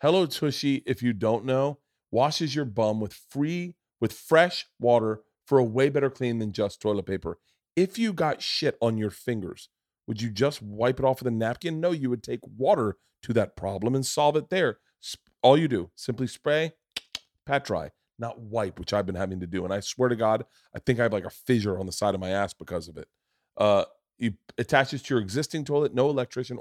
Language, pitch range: English, 105-130 Hz